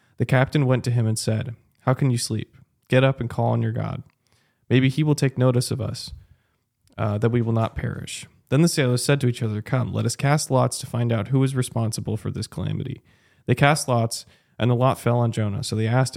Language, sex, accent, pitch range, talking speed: English, male, American, 110-130 Hz, 240 wpm